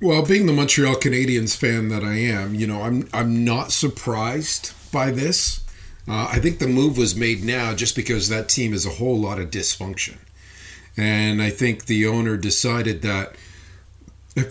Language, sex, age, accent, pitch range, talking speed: English, male, 40-59, American, 95-130 Hz, 180 wpm